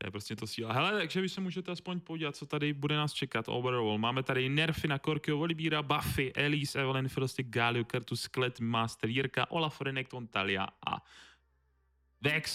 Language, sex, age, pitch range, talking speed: Czech, male, 20-39, 115-150 Hz, 175 wpm